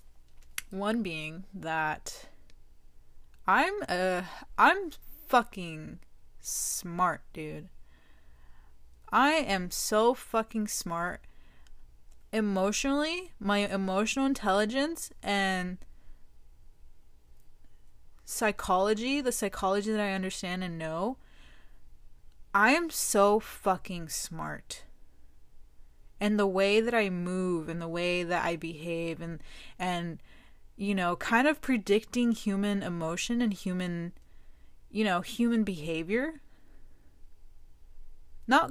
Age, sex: 20-39, female